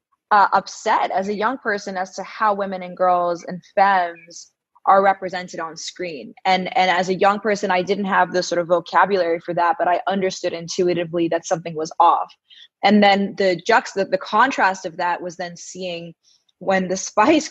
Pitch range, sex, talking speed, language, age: 175-200 Hz, female, 190 wpm, English, 20-39